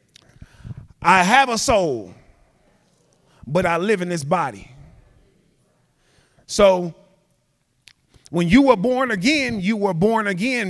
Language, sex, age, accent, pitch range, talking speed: English, male, 30-49, American, 170-230 Hz, 110 wpm